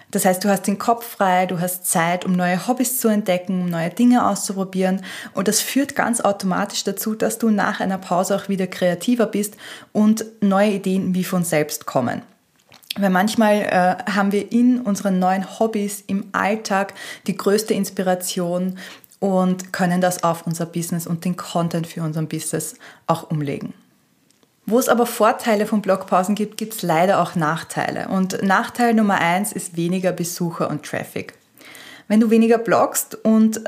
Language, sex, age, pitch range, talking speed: German, female, 20-39, 180-215 Hz, 170 wpm